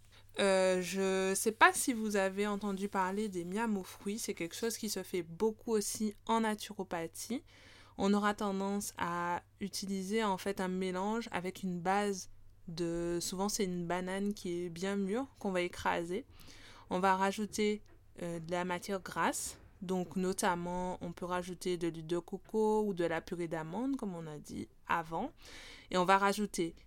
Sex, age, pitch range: female, 20-39, 175-205 Hz